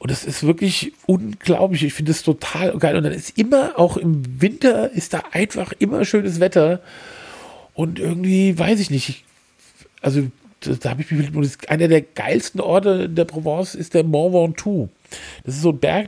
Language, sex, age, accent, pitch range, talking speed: German, male, 40-59, German, 145-185 Hz, 185 wpm